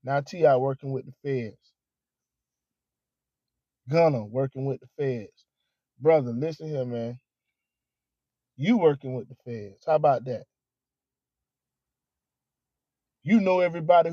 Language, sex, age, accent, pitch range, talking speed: English, male, 20-39, American, 130-195 Hz, 110 wpm